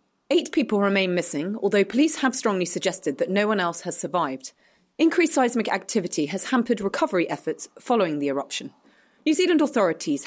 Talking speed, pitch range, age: 165 wpm, 175-260 Hz, 30-49